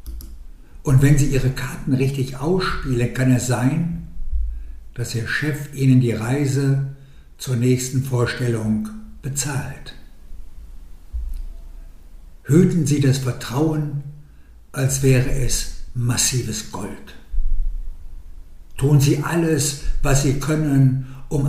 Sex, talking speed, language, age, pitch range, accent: male, 100 wpm, German, 60-79, 90-140 Hz, German